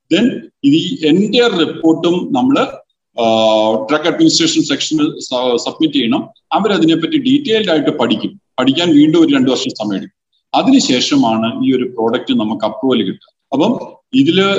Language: Malayalam